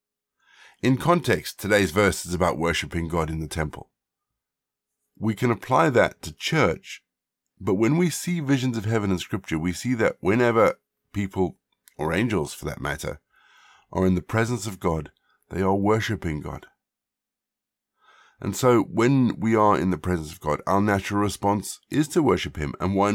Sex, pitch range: male, 85-110 Hz